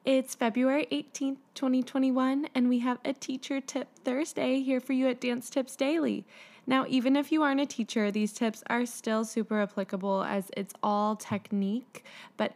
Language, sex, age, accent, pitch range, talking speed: English, female, 10-29, American, 205-265 Hz, 170 wpm